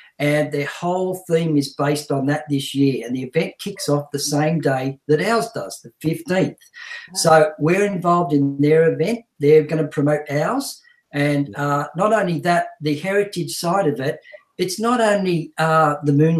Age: 50-69